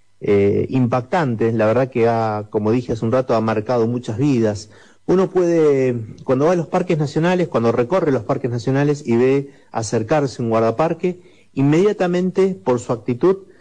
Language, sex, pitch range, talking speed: Spanish, male, 105-135 Hz, 165 wpm